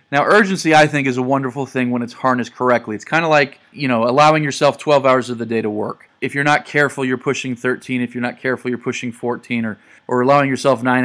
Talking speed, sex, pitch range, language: 250 wpm, male, 125-145 Hz, English